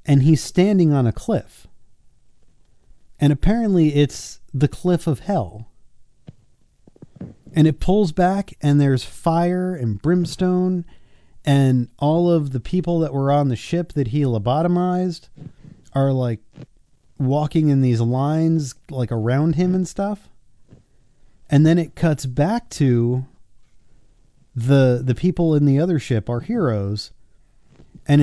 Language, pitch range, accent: English, 120-160 Hz, American